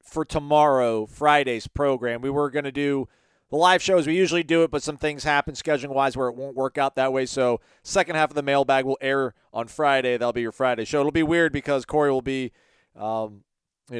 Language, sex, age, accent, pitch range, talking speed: English, male, 40-59, American, 125-160 Hz, 225 wpm